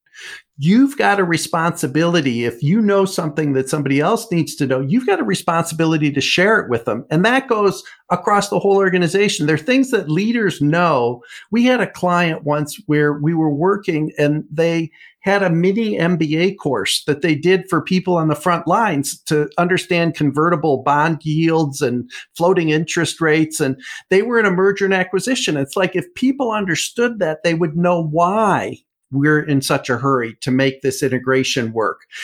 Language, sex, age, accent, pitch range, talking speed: English, male, 50-69, American, 150-190 Hz, 180 wpm